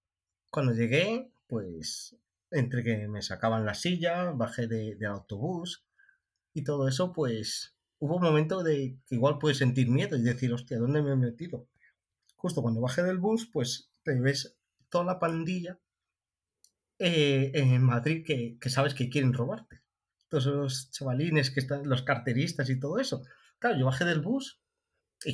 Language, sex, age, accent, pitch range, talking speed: Spanish, male, 30-49, Spanish, 120-155 Hz, 165 wpm